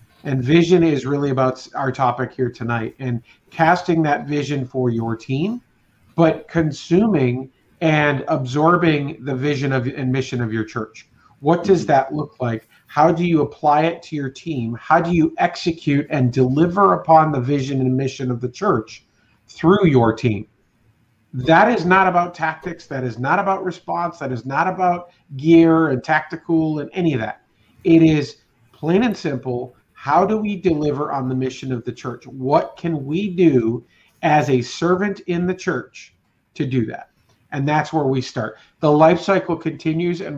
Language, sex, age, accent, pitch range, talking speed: English, male, 50-69, American, 125-165 Hz, 170 wpm